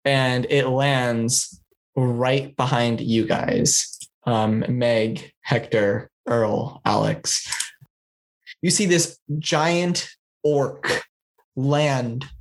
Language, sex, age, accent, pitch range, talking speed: English, male, 20-39, American, 125-155 Hz, 85 wpm